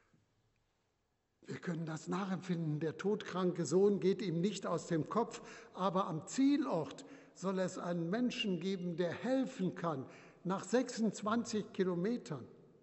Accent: German